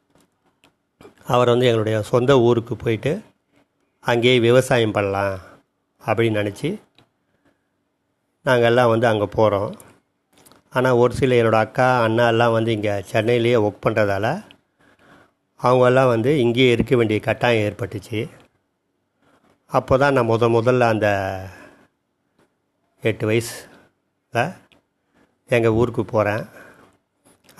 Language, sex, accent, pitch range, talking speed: Tamil, male, native, 110-125 Hz, 95 wpm